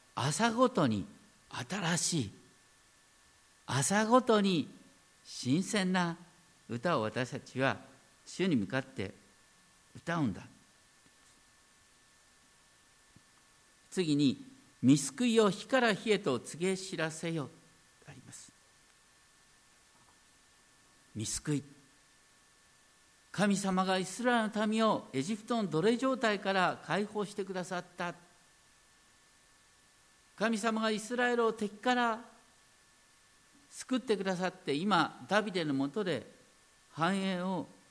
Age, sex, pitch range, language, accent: 50-69, male, 145-215 Hz, Japanese, native